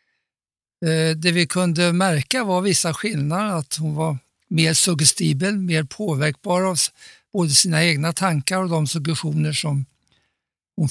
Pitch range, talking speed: 155-185 Hz, 130 wpm